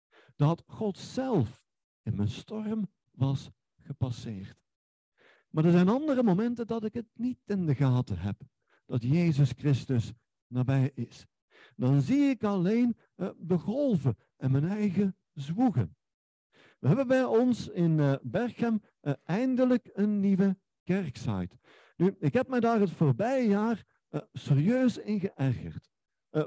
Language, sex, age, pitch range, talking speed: Dutch, male, 50-69, 140-215 Hz, 135 wpm